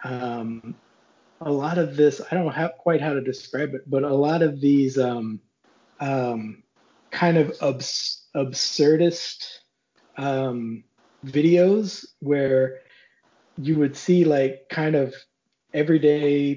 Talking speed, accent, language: 125 wpm, American, English